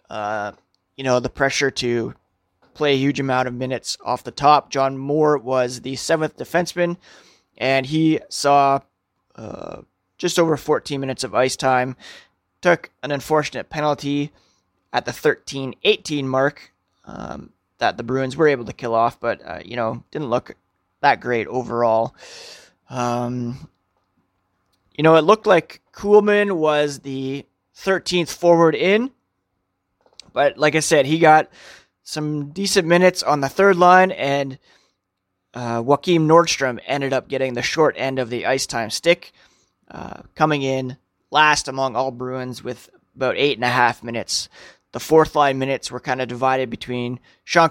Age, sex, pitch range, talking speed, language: 30-49, male, 125-160 Hz, 155 wpm, English